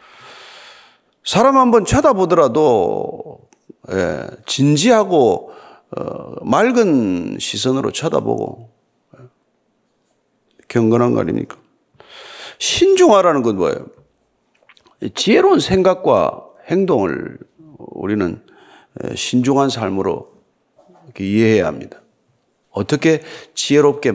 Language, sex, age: Korean, male, 40-59